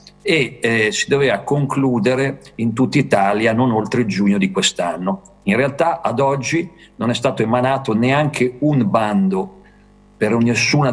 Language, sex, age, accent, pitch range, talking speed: Italian, male, 50-69, native, 100-140 Hz, 145 wpm